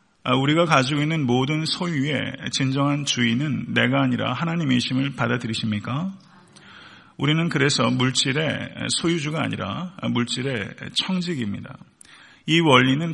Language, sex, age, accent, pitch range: Korean, male, 40-59, native, 125-155 Hz